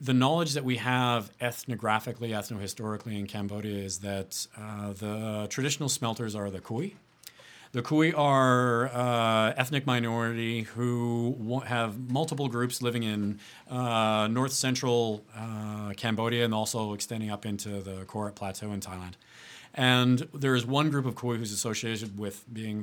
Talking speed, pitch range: 150 wpm, 105-125 Hz